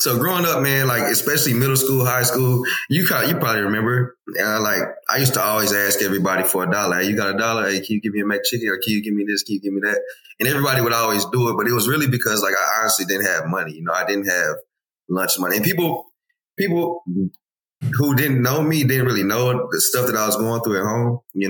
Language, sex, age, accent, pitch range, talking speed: English, male, 20-39, American, 100-125 Hz, 260 wpm